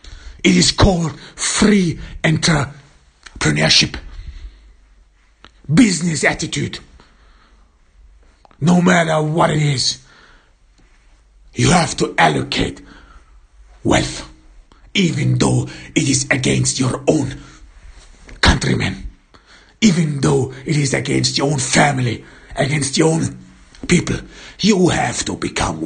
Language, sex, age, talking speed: English, male, 60-79, 95 wpm